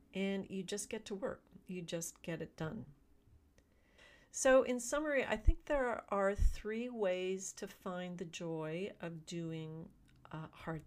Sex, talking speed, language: female, 155 wpm, English